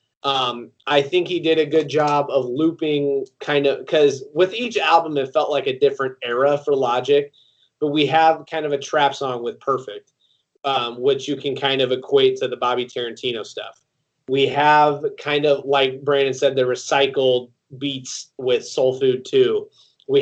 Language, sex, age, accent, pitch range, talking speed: English, male, 30-49, American, 130-155 Hz, 180 wpm